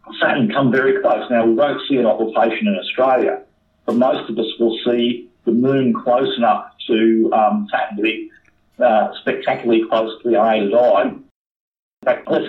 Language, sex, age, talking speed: English, male, 50-69, 180 wpm